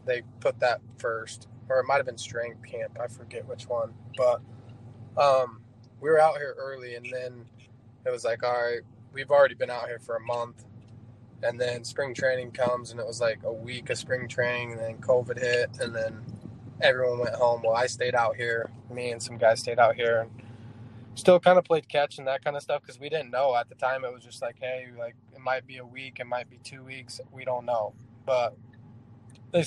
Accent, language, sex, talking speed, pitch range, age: American, English, male, 225 wpm, 115-130 Hz, 20-39